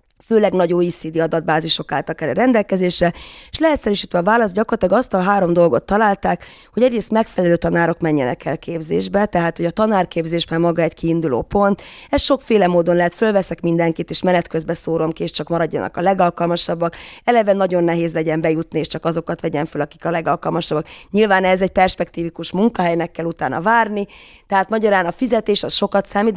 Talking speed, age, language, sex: 175 wpm, 30-49, Hungarian, female